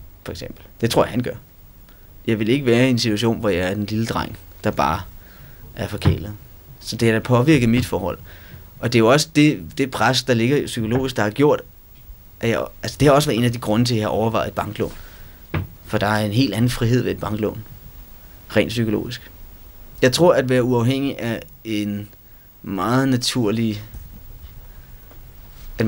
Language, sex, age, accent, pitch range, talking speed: Danish, male, 30-49, native, 95-125 Hz, 195 wpm